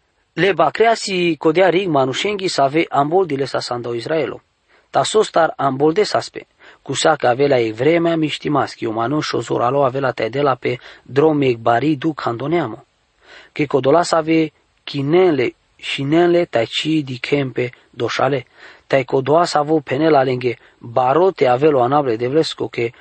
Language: English